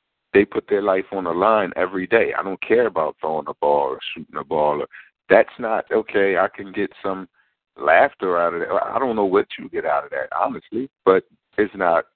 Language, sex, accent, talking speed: English, male, American, 215 wpm